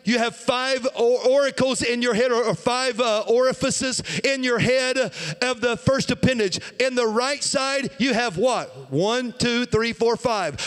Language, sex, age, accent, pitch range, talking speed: English, male, 40-59, American, 225-265 Hz, 170 wpm